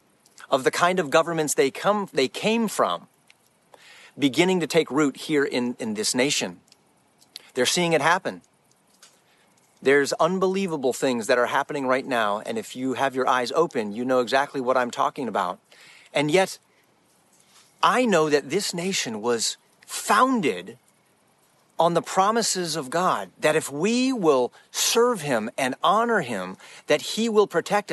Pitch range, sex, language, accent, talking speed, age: 150-215 Hz, male, English, American, 155 wpm, 40-59